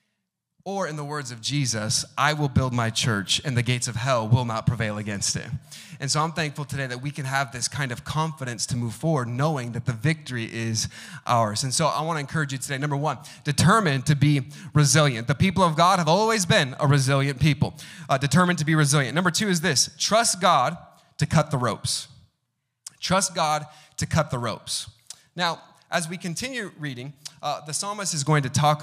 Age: 30-49